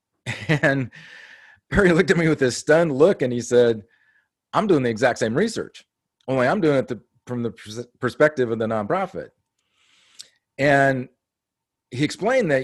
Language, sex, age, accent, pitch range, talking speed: English, male, 40-59, American, 120-150 Hz, 155 wpm